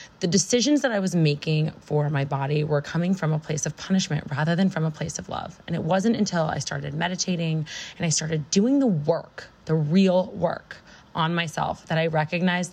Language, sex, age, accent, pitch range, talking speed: English, female, 20-39, American, 150-185 Hz, 205 wpm